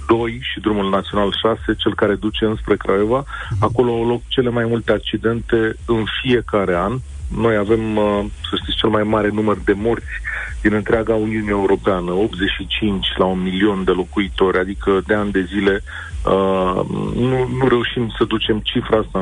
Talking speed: 160 wpm